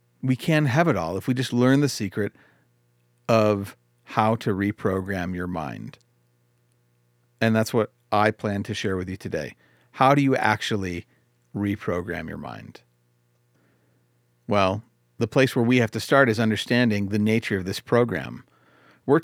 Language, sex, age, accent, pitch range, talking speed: English, male, 40-59, American, 85-125 Hz, 155 wpm